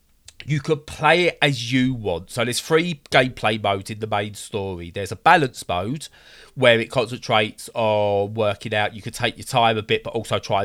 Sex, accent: male, British